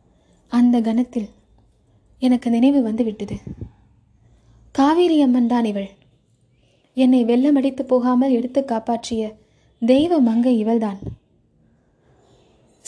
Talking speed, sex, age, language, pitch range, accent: 85 wpm, female, 20-39, Tamil, 215-285 Hz, native